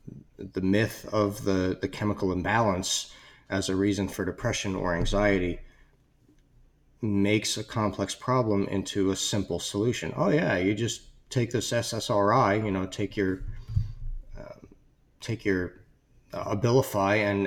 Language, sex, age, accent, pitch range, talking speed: English, male, 40-59, American, 95-120 Hz, 135 wpm